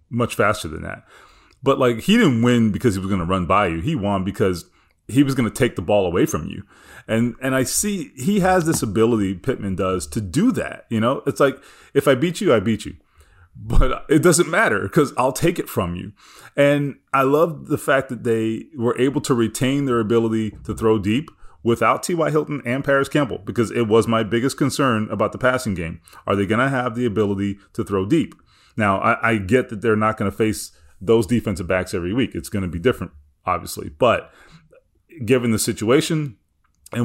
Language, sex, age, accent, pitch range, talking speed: English, male, 30-49, American, 100-130 Hz, 215 wpm